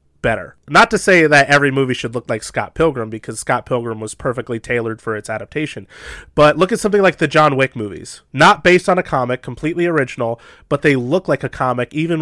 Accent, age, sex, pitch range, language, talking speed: American, 30-49, male, 120-150 Hz, English, 215 wpm